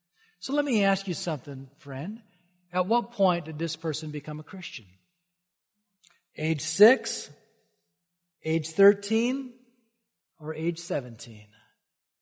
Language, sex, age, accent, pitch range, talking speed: English, male, 40-59, American, 145-195 Hz, 115 wpm